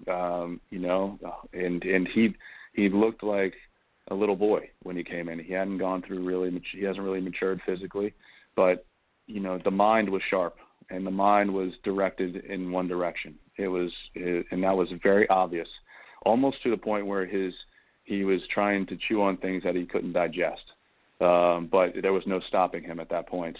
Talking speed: 190 wpm